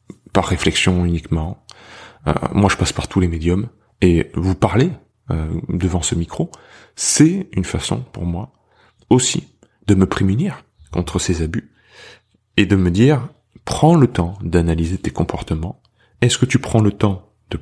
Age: 30-49